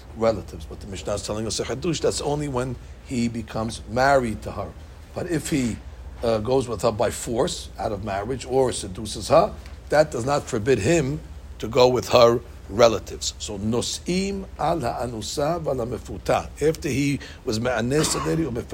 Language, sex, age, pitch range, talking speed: English, male, 60-79, 85-130 Hz, 140 wpm